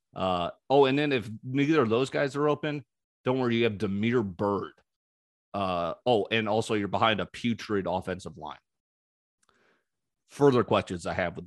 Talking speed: 165 wpm